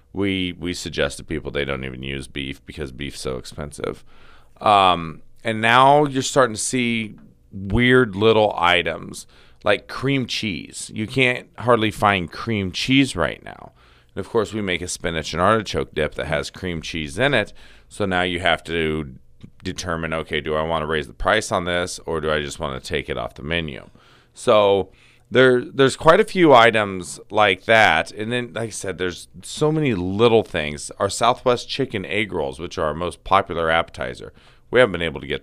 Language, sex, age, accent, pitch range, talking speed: English, male, 40-59, American, 80-110 Hz, 195 wpm